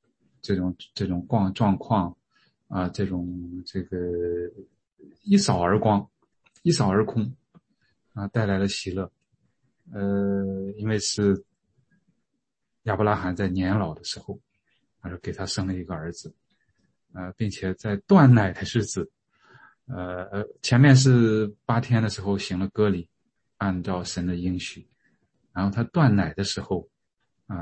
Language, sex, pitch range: English, male, 90-110 Hz